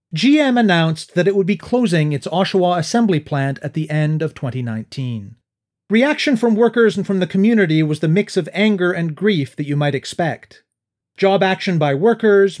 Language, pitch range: English, 150-220 Hz